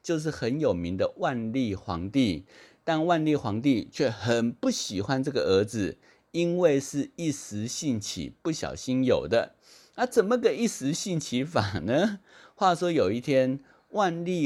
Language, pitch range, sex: Chinese, 115-175 Hz, male